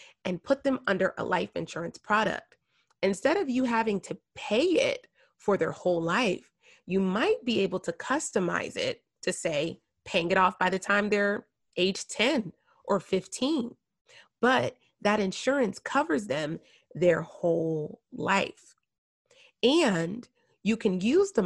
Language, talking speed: English, 145 wpm